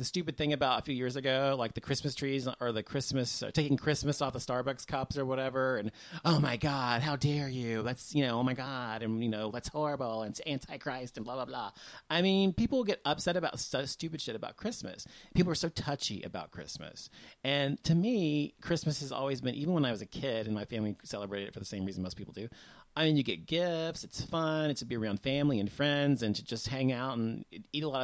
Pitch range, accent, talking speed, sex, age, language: 115-150 Hz, American, 250 wpm, male, 30-49, English